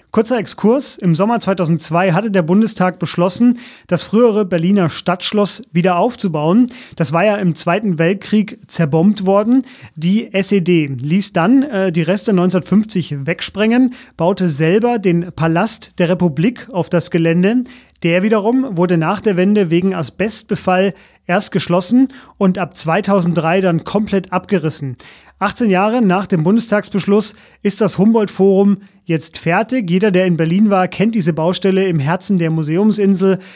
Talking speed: 140 wpm